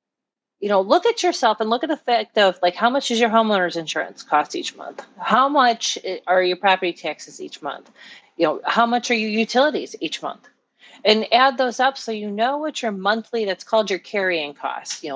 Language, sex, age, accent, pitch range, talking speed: English, female, 40-59, American, 185-245 Hz, 215 wpm